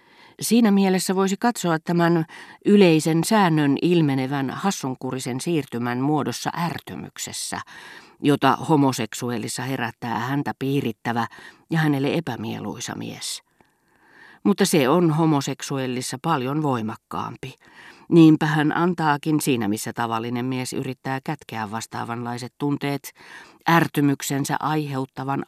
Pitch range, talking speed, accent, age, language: 120-155 Hz, 95 wpm, native, 40-59, Finnish